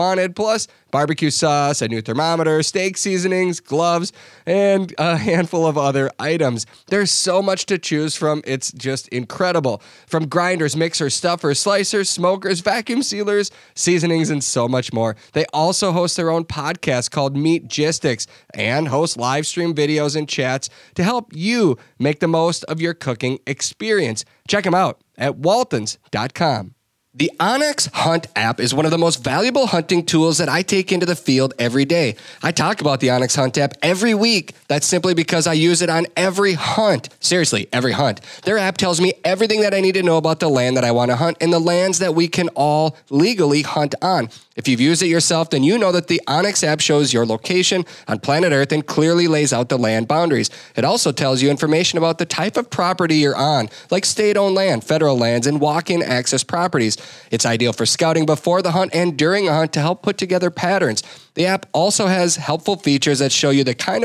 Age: 30-49